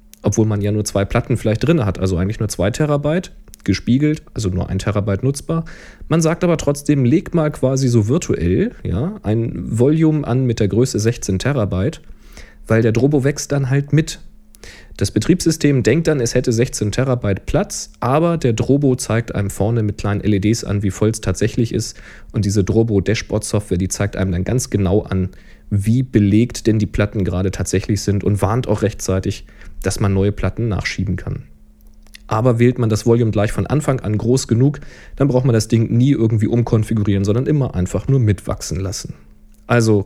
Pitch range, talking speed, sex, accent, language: 100-140 Hz, 185 wpm, male, German, German